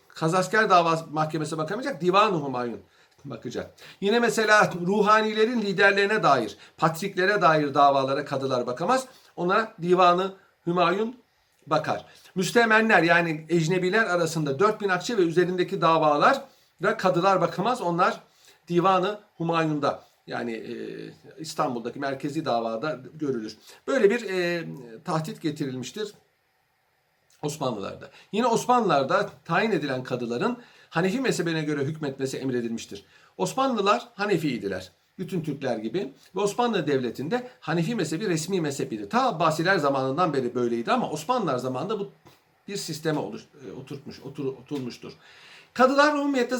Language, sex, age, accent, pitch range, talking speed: Turkish, male, 50-69, native, 145-210 Hz, 110 wpm